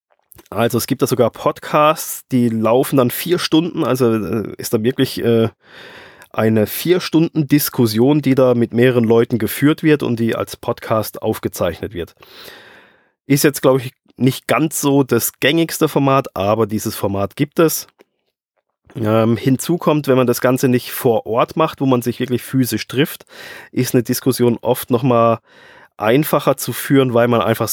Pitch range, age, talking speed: 110-135 Hz, 20-39, 160 wpm